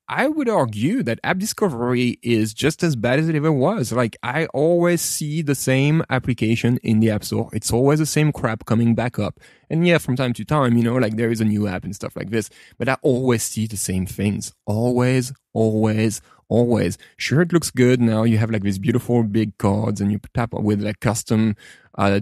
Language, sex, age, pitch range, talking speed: English, male, 20-39, 110-140 Hz, 215 wpm